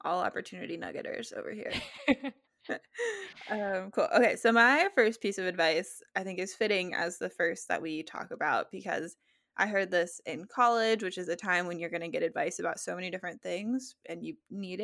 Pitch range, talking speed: 180-235 Hz, 200 wpm